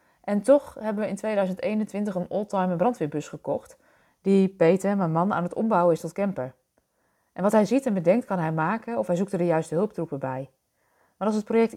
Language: Dutch